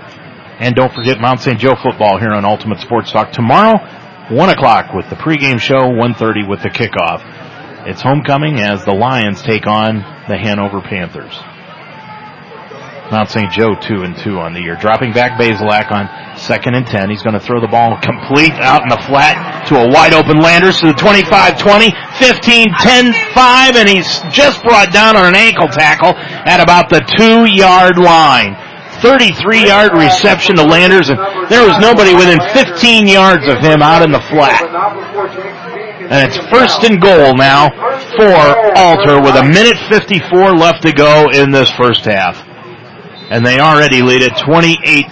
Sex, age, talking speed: male, 40-59, 170 wpm